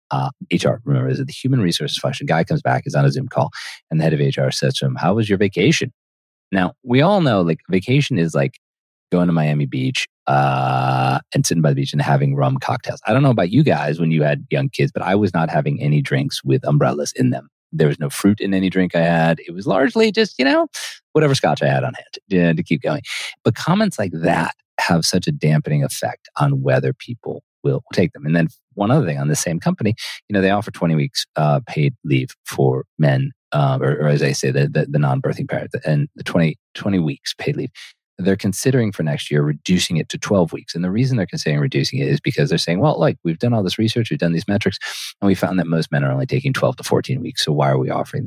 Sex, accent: male, American